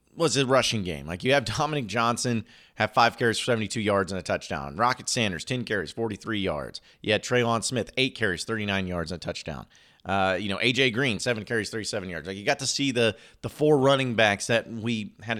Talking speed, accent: 240 wpm, American